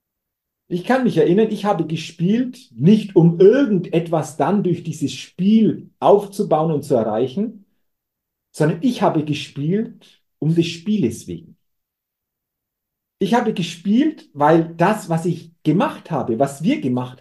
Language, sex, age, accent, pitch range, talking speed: German, male, 50-69, German, 150-210 Hz, 135 wpm